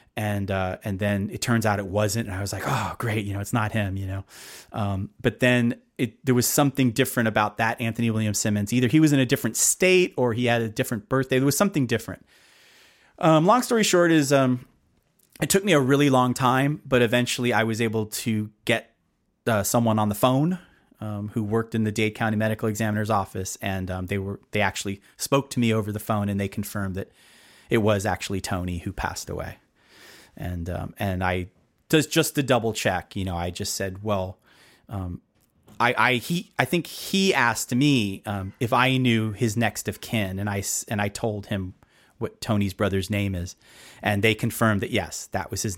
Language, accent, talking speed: English, American, 210 wpm